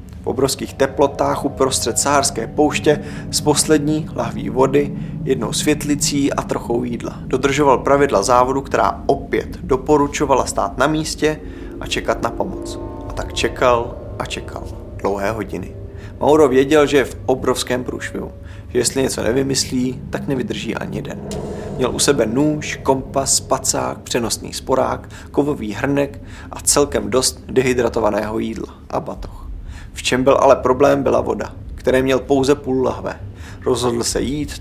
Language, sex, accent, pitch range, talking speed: Czech, male, native, 110-140 Hz, 140 wpm